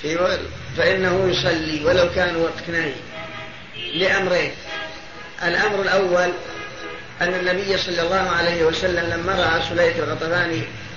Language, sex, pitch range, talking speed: Arabic, female, 165-190 Hz, 105 wpm